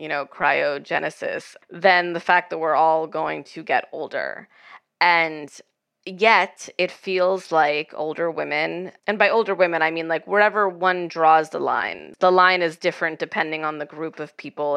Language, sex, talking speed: English, female, 170 wpm